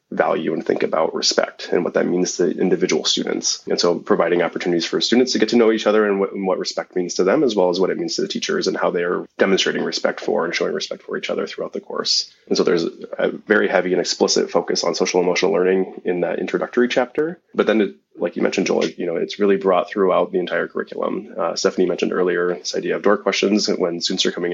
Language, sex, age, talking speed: English, male, 20-39, 245 wpm